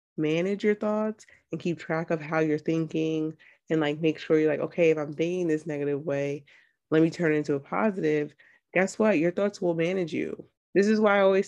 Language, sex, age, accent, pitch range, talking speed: English, female, 20-39, American, 150-180 Hz, 220 wpm